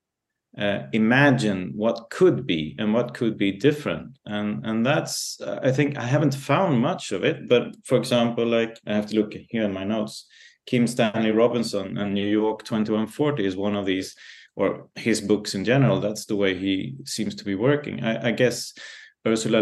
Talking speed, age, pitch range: 190 wpm, 30-49, 100-125 Hz